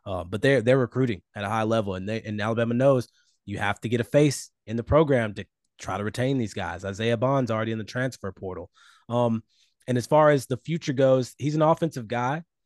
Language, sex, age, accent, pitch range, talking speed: English, male, 20-39, American, 110-135 Hz, 230 wpm